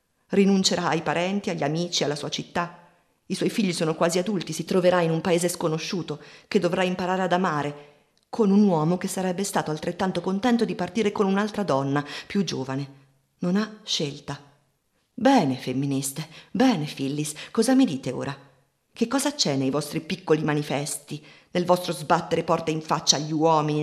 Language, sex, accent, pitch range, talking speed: Italian, female, native, 140-175 Hz, 165 wpm